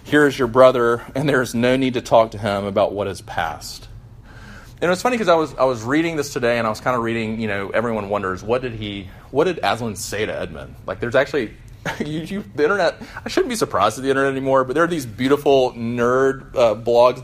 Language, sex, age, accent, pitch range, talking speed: English, male, 30-49, American, 105-130 Hz, 245 wpm